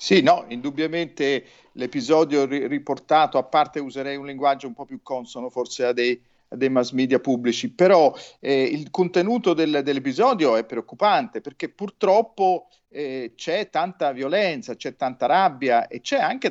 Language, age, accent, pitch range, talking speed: Italian, 40-59, native, 130-195 Hz, 145 wpm